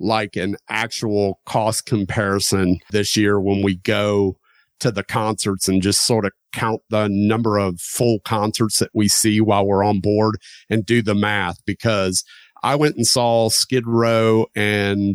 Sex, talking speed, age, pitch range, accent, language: male, 165 wpm, 40-59, 100-115 Hz, American, English